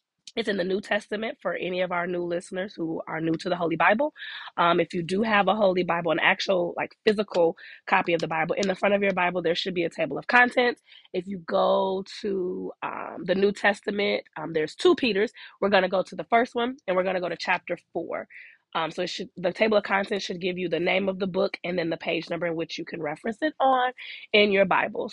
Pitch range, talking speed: 175-230 Hz, 250 wpm